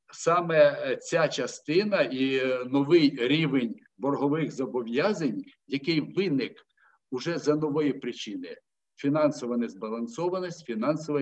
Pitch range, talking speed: 125-165 Hz, 90 wpm